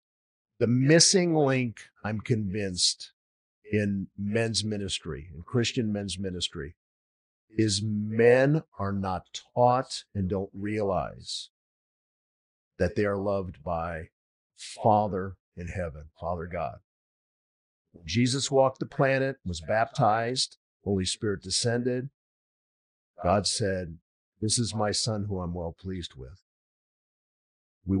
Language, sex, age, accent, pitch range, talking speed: English, male, 50-69, American, 95-120 Hz, 110 wpm